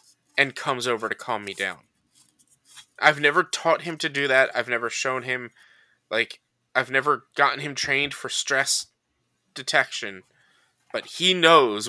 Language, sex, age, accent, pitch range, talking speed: English, male, 20-39, American, 120-145 Hz, 150 wpm